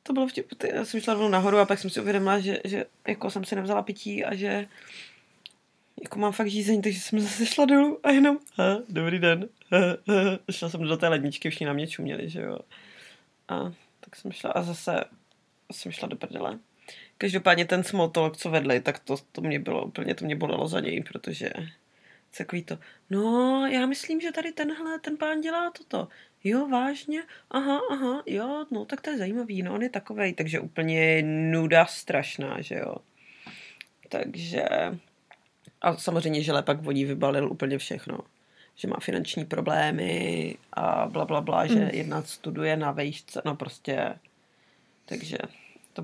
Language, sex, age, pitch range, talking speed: Czech, female, 20-39, 165-245 Hz, 175 wpm